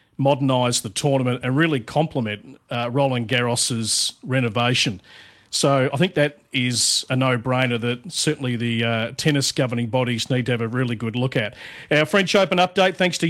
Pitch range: 130-160 Hz